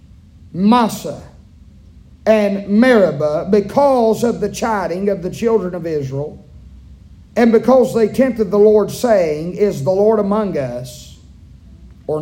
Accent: American